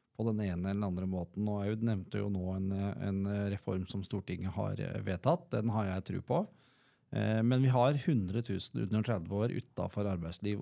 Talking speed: 180 wpm